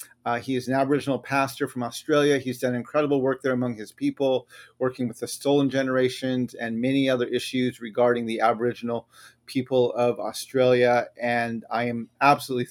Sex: male